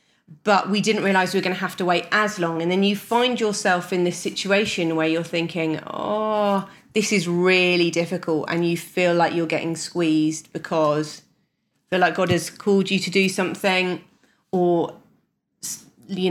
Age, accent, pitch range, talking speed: 30-49, British, 170-210 Hz, 180 wpm